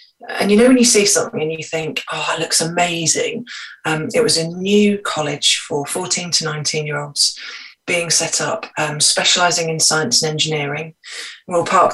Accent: British